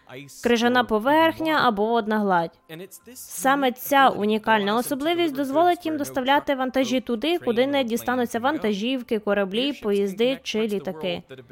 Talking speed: 115 wpm